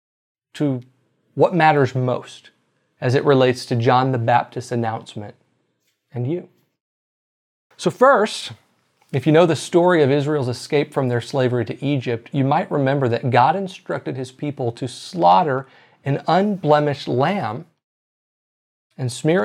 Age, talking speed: 40-59, 135 wpm